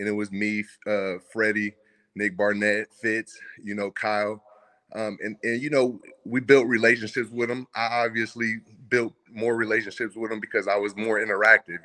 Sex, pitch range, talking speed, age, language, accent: male, 105-120 Hz, 170 wpm, 30-49, English, American